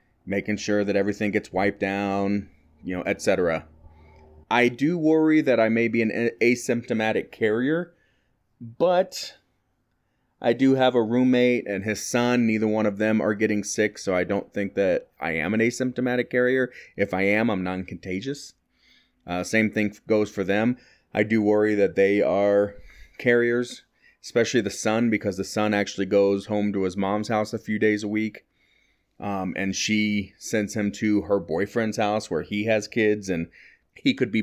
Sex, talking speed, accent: male, 175 wpm, American